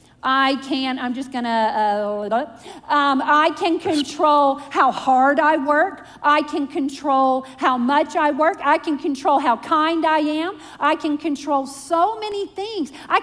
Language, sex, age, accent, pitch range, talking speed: English, female, 40-59, American, 275-375 Hz, 165 wpm